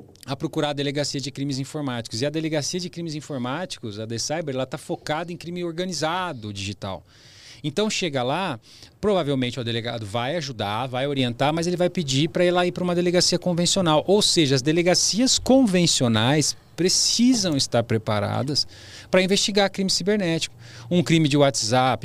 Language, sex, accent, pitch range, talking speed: Portuguese, male, Brazilian, 115-165 Hz, 165 wpm